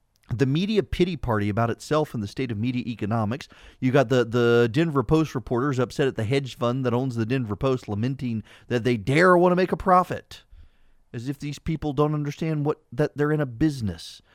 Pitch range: 105-150 Hz